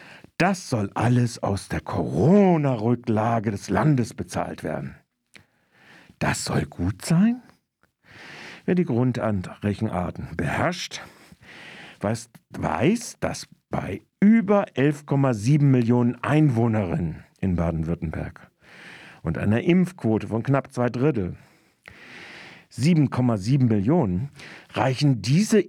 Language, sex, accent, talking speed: German, male, German, 90 wpm